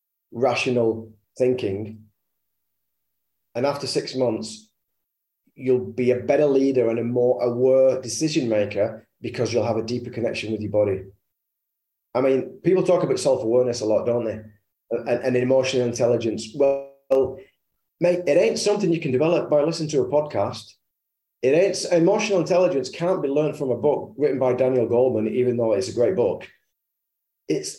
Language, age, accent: English, 30-49, British